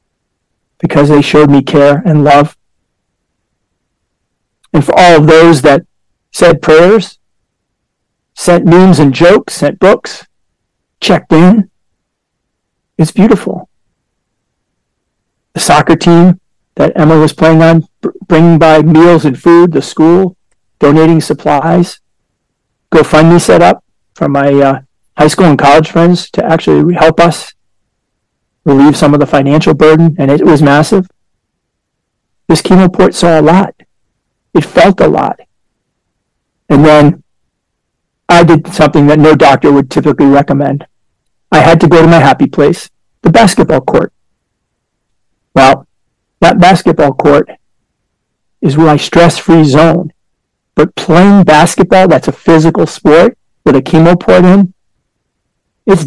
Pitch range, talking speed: 145-175 Hz, 130 wpm